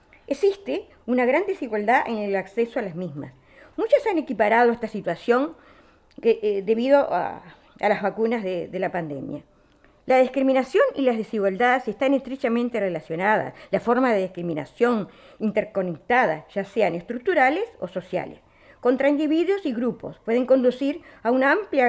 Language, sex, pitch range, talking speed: Spanish, female, 195-265 Hz, 145 wpm